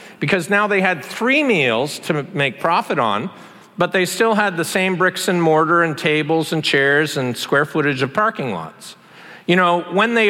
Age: 50-69